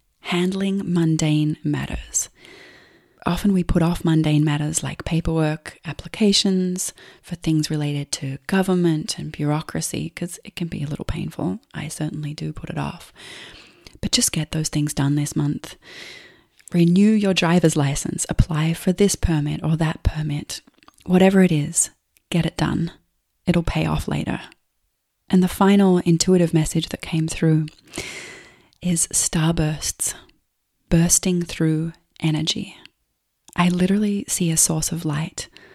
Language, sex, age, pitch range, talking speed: English, female, 30-49, 155-180 Hz, 135 wpm